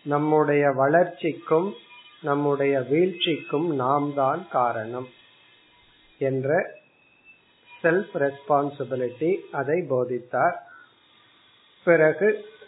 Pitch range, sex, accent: 135-170 Hz, male, native